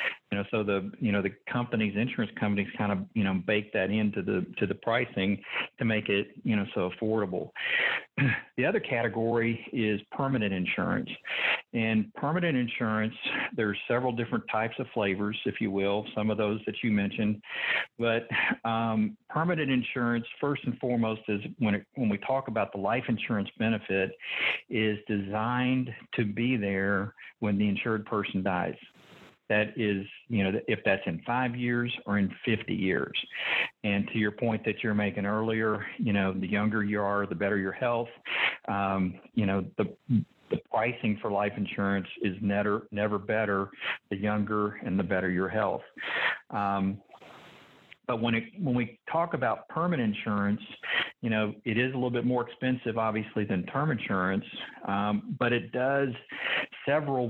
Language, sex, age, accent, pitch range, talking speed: English, male, 50-69, American, 100-120 Hz, 170 wpm